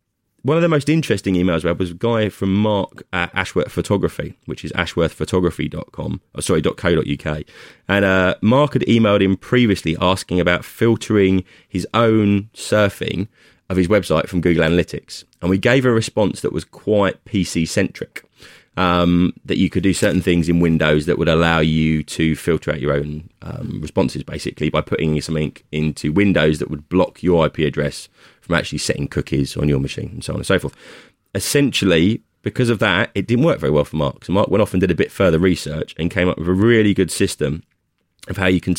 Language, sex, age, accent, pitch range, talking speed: English, male, 20-39, British, 80-100 Hz, 195 wpm